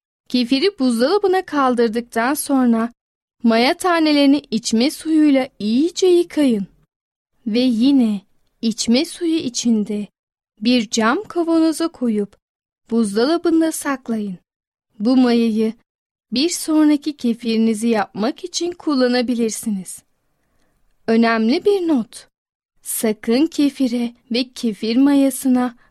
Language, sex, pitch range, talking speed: Turkish, female, 225-295 Hz, 85 wpm